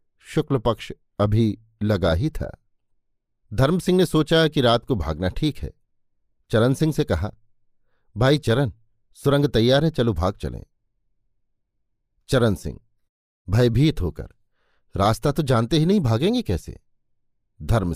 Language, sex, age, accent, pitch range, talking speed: Hindi, male, 50-69, native, 100-135 Hz, 135 wpm